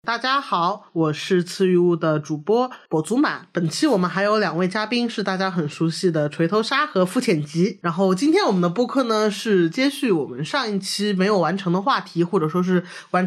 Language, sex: Chinese, male